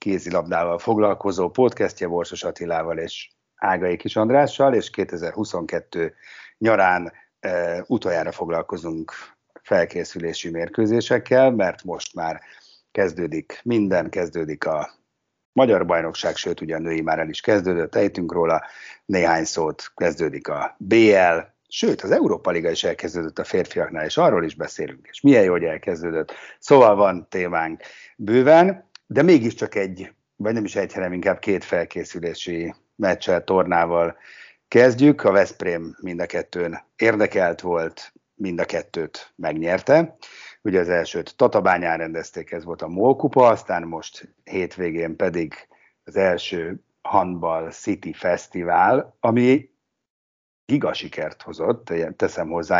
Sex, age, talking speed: male, 60-79, 125 wpm